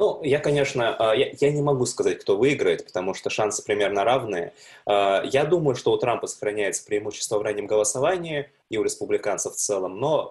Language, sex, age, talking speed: Russian, male, 20-39, 180 wpm